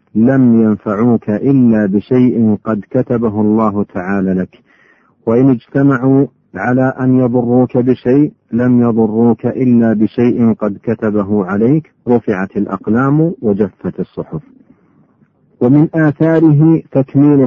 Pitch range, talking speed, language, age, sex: 105-130 Hz, 100 wpm, Arabic, 50-69, male